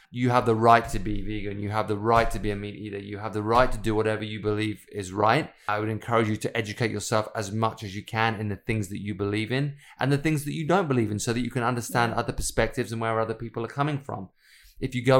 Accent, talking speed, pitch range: British, 280 wpm, 105-125 Hz